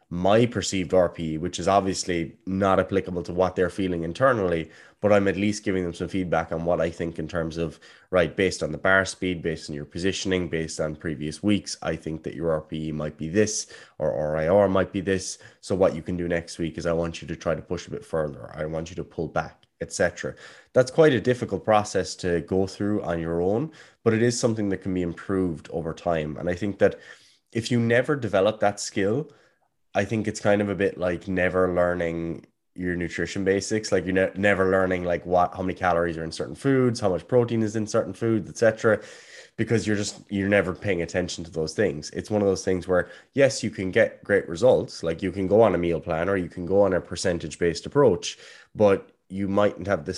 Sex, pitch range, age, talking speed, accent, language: male, 85-100 Hz, 20-39, 230 wpm, Irish, English